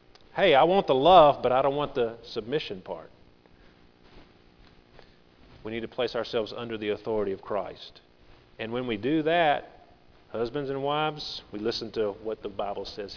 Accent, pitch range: American, 95-130 Hz